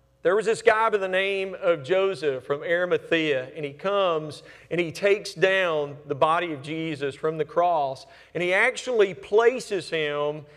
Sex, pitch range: male, 175-235 Hz